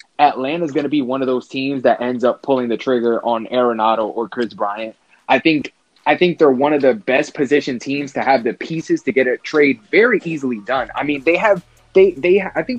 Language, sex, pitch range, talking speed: English, male, 120-160 Hz, 235 wpm